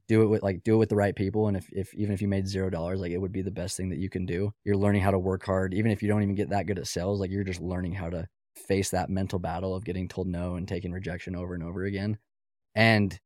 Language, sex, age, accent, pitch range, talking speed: English, male, 20-39, American, 90-100 Hz, 310 wpm